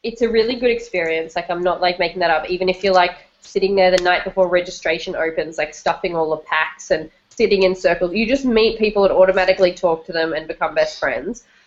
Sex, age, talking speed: female, 10-29, 230 wpm